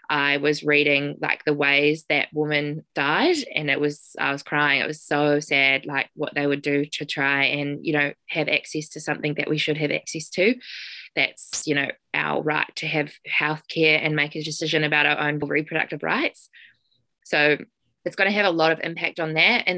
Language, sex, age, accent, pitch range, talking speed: English, female, 20-39, Australian, 145-160 Hz, 205 wpm